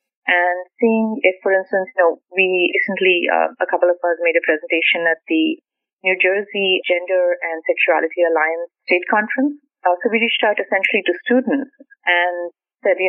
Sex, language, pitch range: female, English, 175-265 Hz